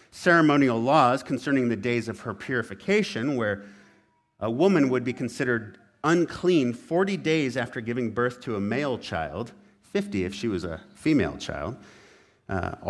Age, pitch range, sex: 50-69, 110-165 Hz, male